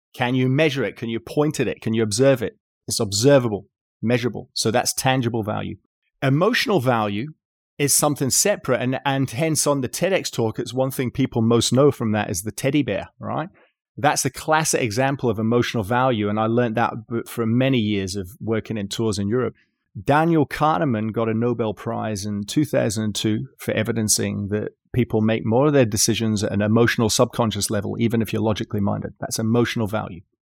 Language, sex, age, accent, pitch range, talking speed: English, male, 30-49, British, 110-140 Hz, 185 wpm